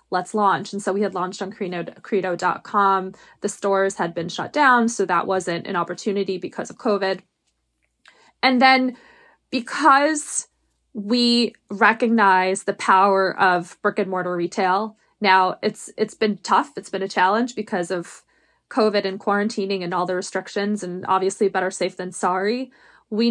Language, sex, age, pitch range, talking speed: English, female, 20-39, 190-225 Hz, 155 wpm